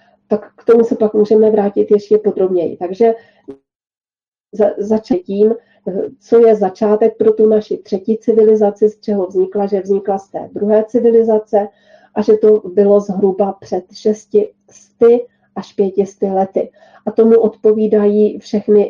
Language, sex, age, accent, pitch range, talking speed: Czech, female, 40-59, native, 195-220 Hz, 135 wpm